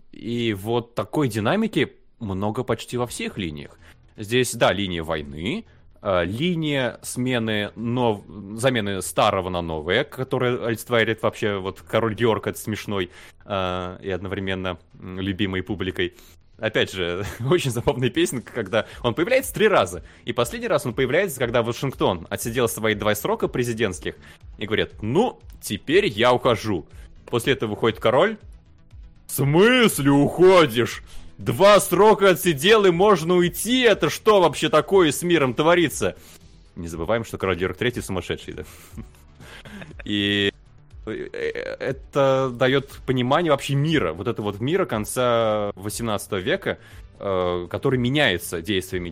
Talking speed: 125 wpm